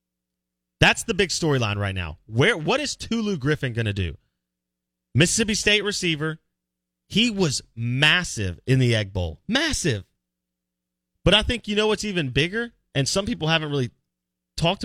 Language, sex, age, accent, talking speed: English, male, 30-49, American, 160 wpm